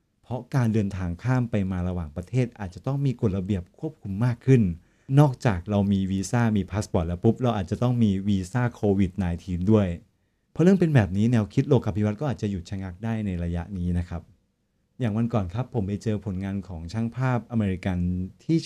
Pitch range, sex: 95-120 Hz, male